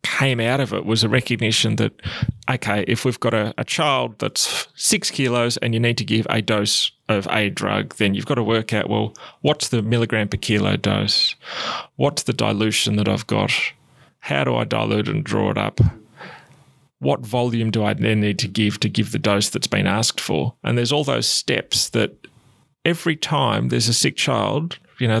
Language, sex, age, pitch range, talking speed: English, male, 30-49, 110-140 Hz, 200 wpm